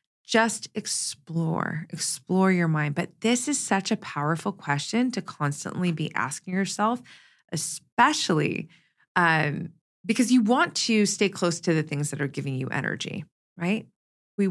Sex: female